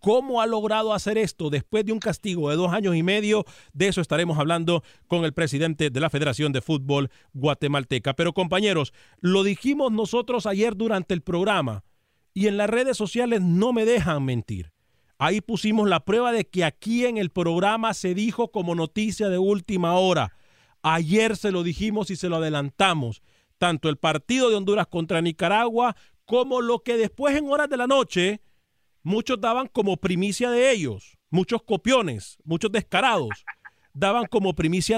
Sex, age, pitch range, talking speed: male, 40-59, 160-215 Hz, 170 wpm